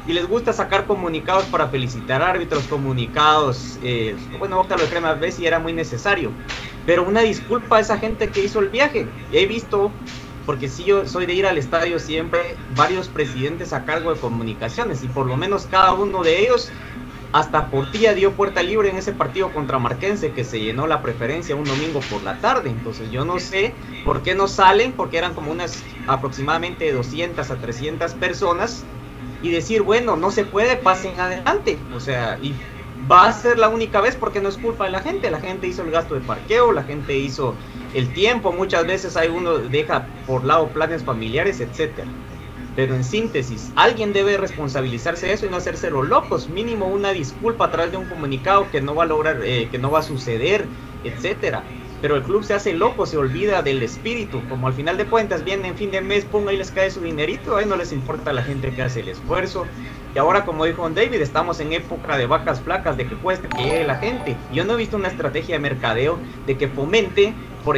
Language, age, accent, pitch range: Spanish, 40-59, Mexican, 135-195 Hz